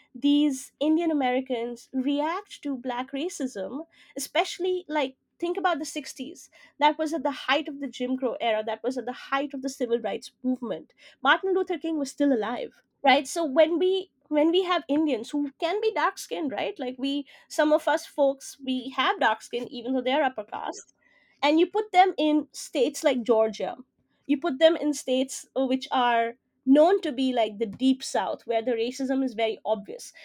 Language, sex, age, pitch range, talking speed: Hindi, female, 20-39, 245-305 Hz, 190 wpm